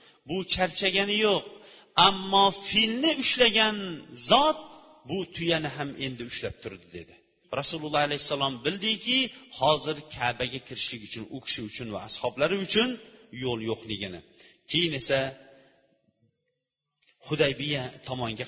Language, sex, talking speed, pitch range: Bulgarian, male, 105 wpm, 125-185 Hz